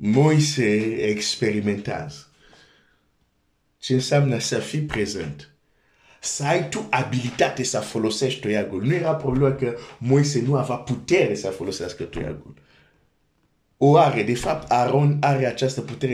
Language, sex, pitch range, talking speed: Romanian, male, 110-140 Hz, 95 wpm